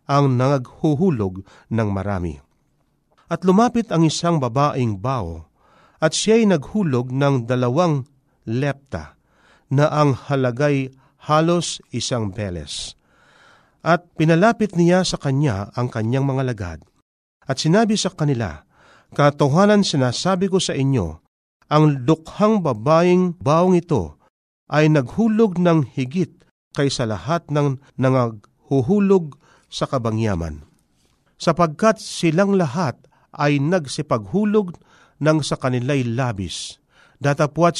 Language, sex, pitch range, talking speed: Filipino, male, 120-170 Hz, 105 wpm